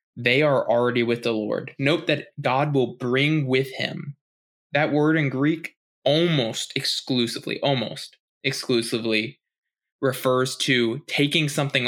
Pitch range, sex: 125-155 Hz, male